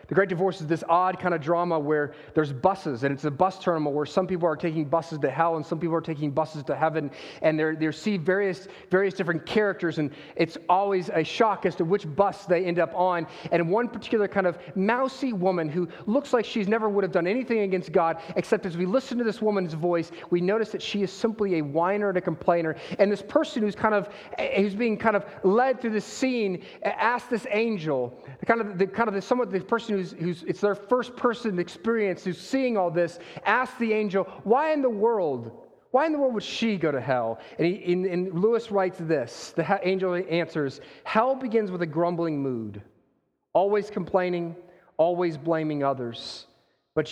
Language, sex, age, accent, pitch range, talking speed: English, male, 30-49, American, 165-215 Hz, 210 wpm